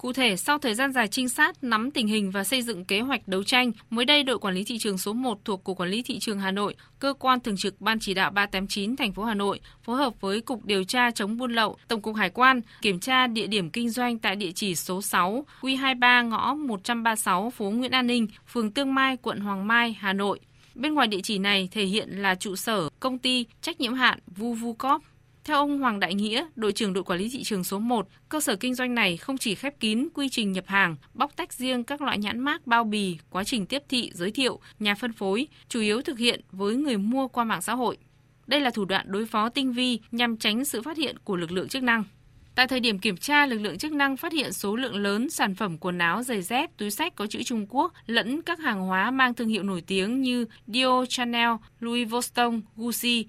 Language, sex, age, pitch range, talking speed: Vietnamese, female, 20-39, 200-255 Hz, 245 wpm